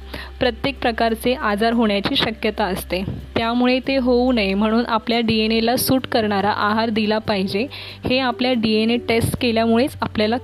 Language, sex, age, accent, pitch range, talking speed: Marathi, female, 20-39, native, 205-235 Hz, 150 wpm